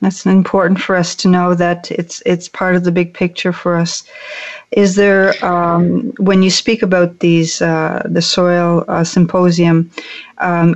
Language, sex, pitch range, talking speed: English, female, 175-200 Hz, 165 wpm